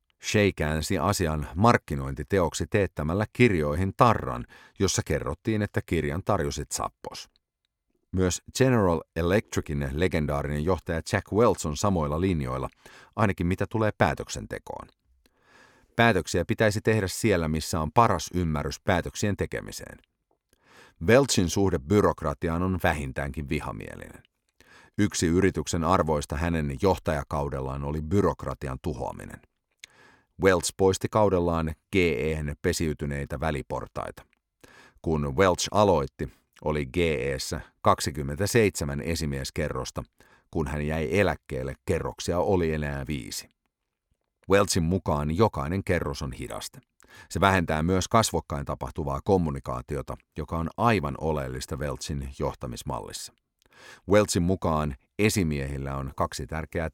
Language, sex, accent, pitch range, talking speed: English, male, Finnish, 75-95 Hz, 100 wpm